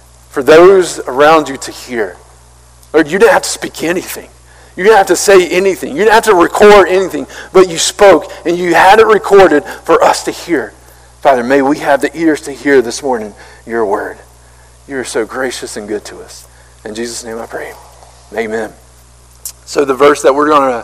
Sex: male